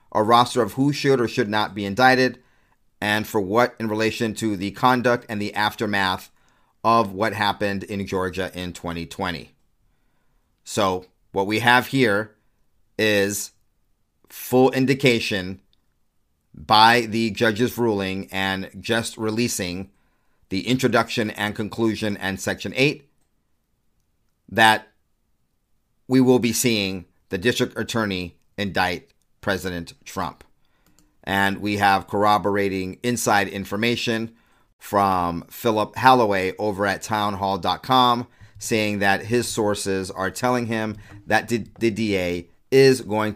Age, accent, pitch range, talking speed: 40-59, American, 95-115 Hz, 120 wpm